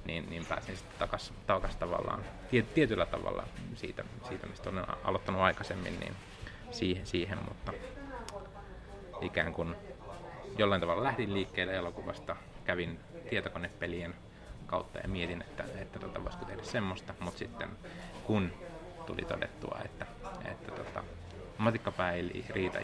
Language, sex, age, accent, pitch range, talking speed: Finnish, male, 30-49, native, 90-100 Hz, 120 wpm